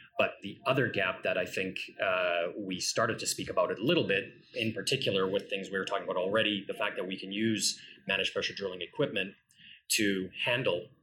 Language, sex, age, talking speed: English, male, 30-49, 205 wpm